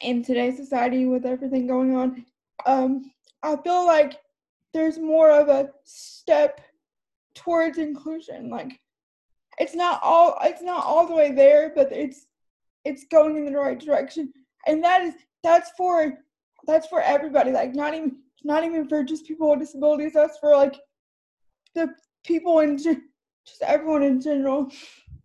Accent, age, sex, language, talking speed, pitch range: American, 20-39, female, English, 150 wpm, 280-325 Hz